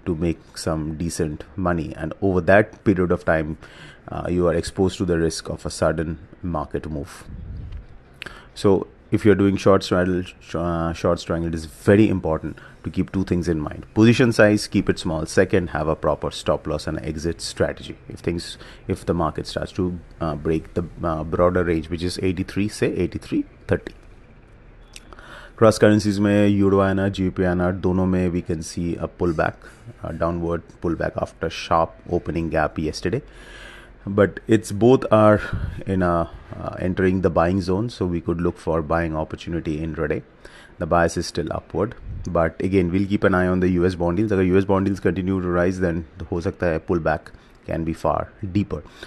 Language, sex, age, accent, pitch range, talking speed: English, male, 30-49, Indian, 80-100 Hz, 180 wpm